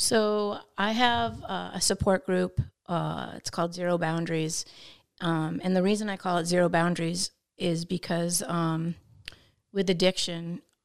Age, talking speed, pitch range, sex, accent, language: 30-49, 140 wpm, 165-185 Hz, female, American, English